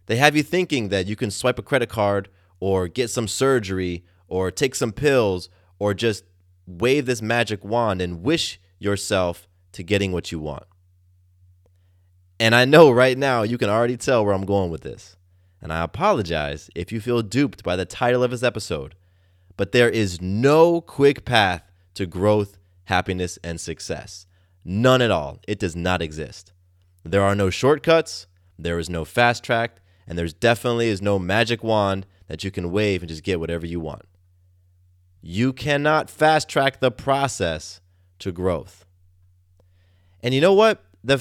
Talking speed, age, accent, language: 170 wpm, 20-39, American, English